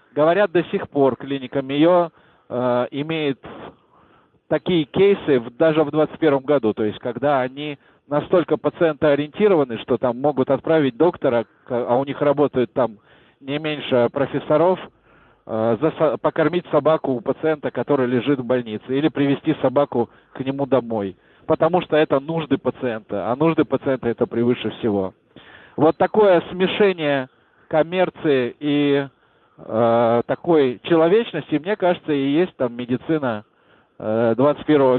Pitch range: 125-160 Hz